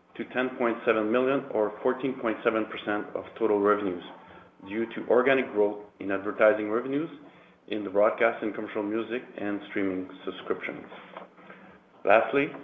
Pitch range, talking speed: 105-130 Hz, 120 wpm